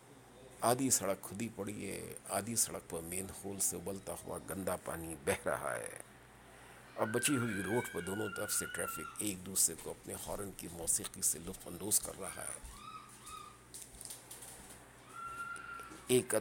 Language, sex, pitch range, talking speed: Urdu, male, 95-115 Hz, 150 wpm